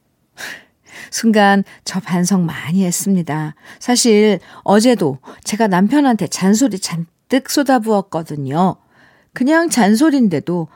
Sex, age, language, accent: female, 50-69, Korean, native